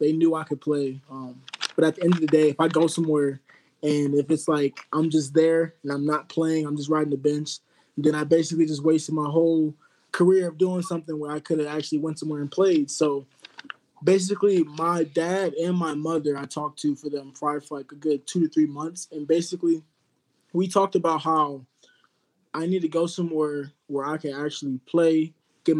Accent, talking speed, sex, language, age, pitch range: American, 210 wpm, male, English, 20-39, 145-165 Hz